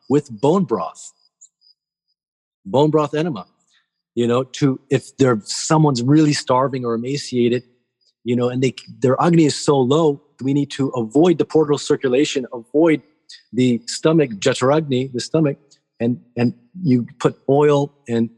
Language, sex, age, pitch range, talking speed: English, male, 30-49, 120-150 Hz, 145 wpm